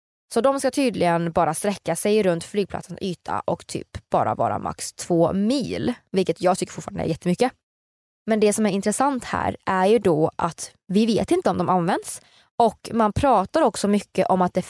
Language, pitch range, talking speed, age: Swedish, 175-230 Hz, 190 wpm, 20-39